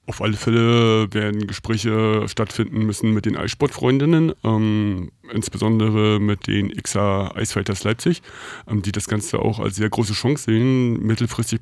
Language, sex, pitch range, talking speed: German, male, 100-115 Hz, 140 wpm